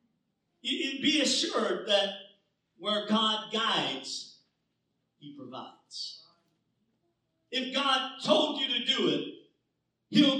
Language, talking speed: English, 90 wpm